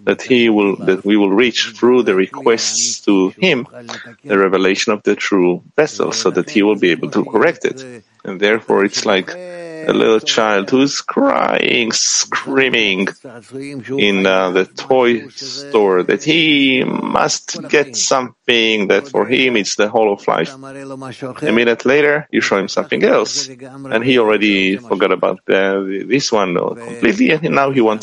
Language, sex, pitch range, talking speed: English, male, 100-135 Hz, 165 wpm